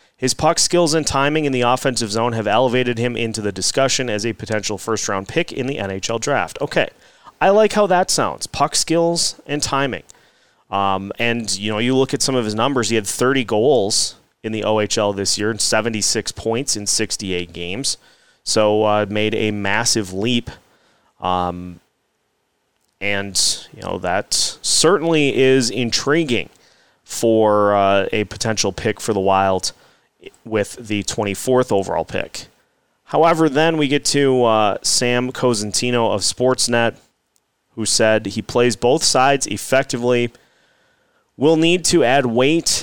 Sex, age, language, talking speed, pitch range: male, 30-49, English, 155 wpm, 105-130 Hz